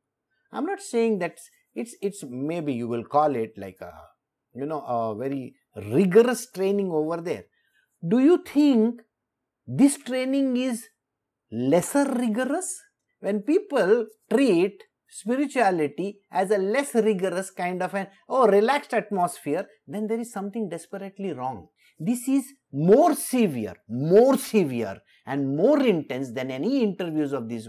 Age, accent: 50-69, Indian